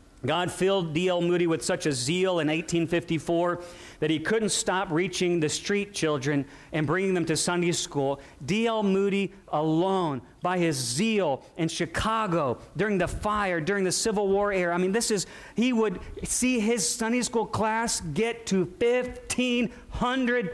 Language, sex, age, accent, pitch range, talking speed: English, male, 40-59, American, 175-235 Hz, 160 wpm